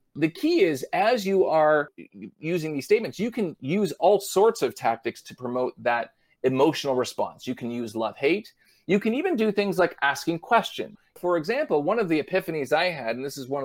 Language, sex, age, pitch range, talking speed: English, male, 30-49, 135-200 Hz, 200 wpm